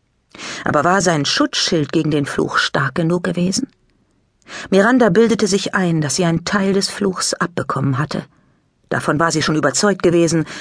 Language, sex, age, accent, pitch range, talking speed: German, female, 50-69, German, 150-195 Hz, 160 wpm